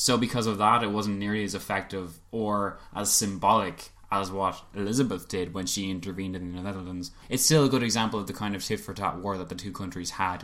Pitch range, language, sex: 95-115 Hz, English, male